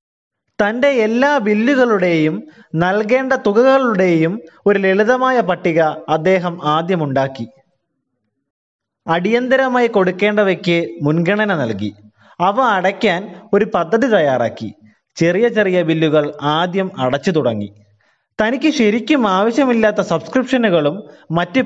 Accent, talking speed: native, 85 wpm